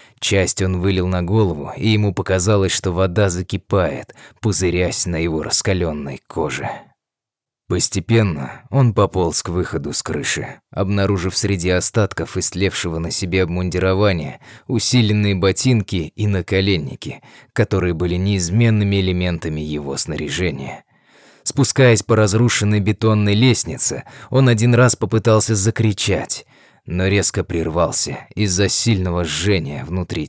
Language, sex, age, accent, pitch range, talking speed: Russian, male, 20-39, native, 90-110 Hz, 115 wpm